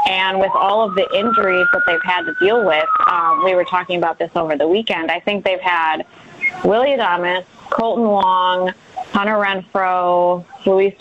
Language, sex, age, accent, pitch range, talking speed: English, female, 20-39, American, 180-220 Hz, 175 wpm